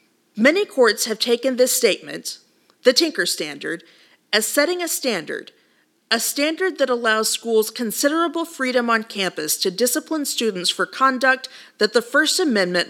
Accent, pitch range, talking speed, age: American, 205-275 Hz, 145 wpm, 40-59